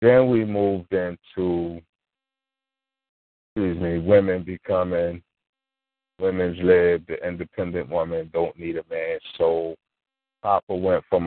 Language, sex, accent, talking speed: English, male, American, 110 wpm